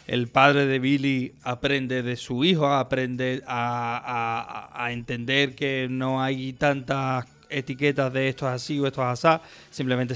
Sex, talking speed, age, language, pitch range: male, 160 wpm, 30-49, Spanish, 135-150 Hz